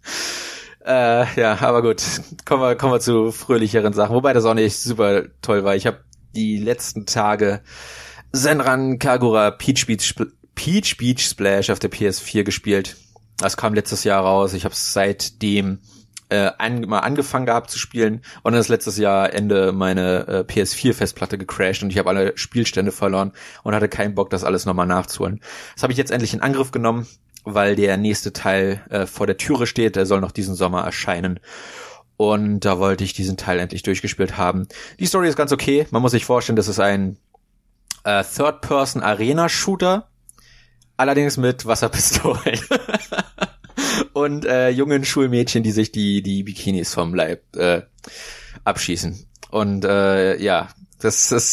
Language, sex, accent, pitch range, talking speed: German, male, German, 100-125 Hz, 165 wpm